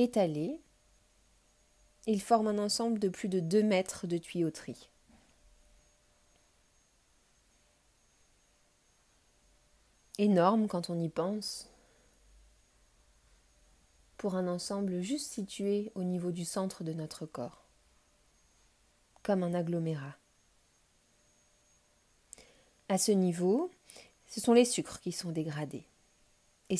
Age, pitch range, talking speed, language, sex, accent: 30-49, 165-210 Hz, 95 wpm, French, female, French